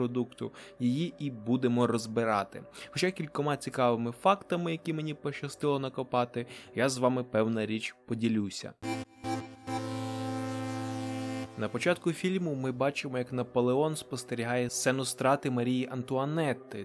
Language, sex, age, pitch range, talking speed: Ukrainian, male, 20-39, 120-145 Hz, 110 wpm